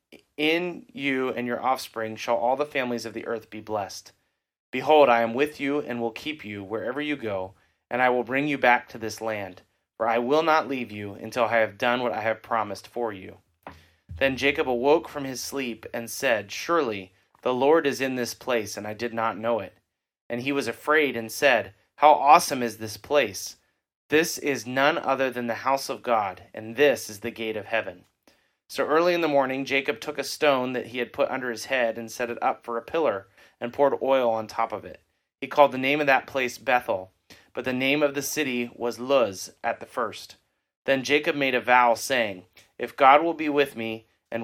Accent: American